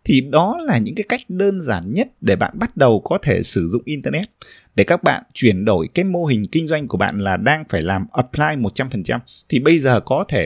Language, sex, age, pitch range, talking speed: Vietnamese, male, 20-39, 110-170 Hz, 235 wpm